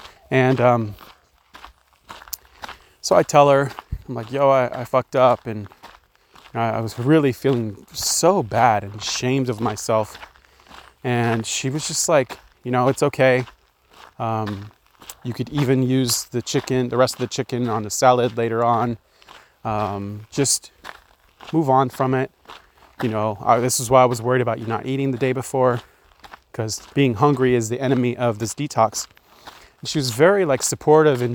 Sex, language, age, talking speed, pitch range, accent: male, English, 20-39, 165 wpm, 115-135 Hz, American